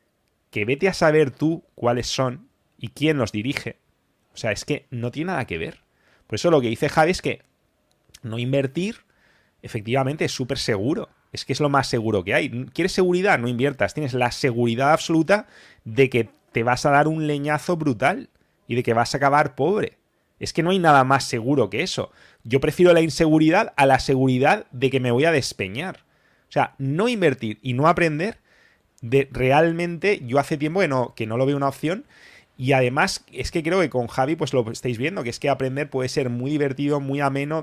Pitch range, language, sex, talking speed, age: 125-155 Hz, English, male, 205 wpm, 30-49